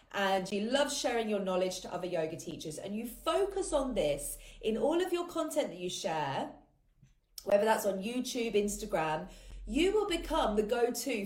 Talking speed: 175 wpm